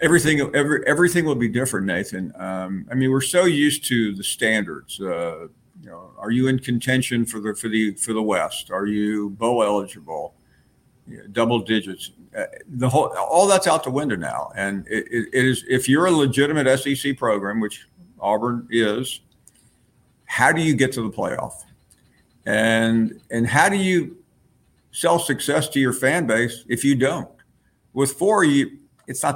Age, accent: 50-69, American